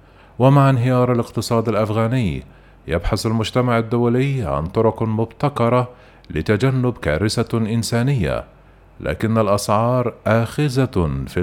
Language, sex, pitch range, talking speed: Arabic, male, 105-125 Hz, 90 wpm